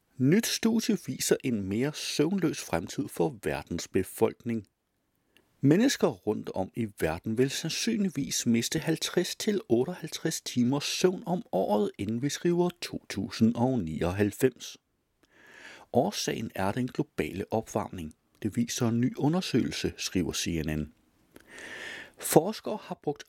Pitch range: 120-190 Hz